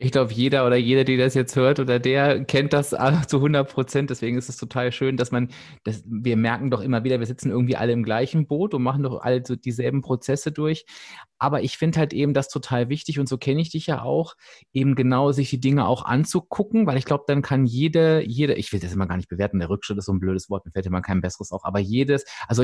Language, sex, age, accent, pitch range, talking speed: German, male, 30-49, German, 125-150 Hz, 255 wpm